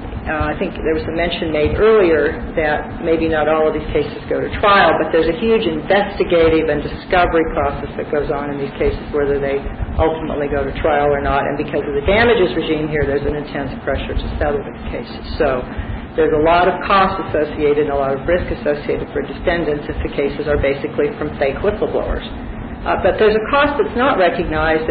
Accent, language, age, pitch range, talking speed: American, English, 50-69, 145-175 Hz, 210 wpm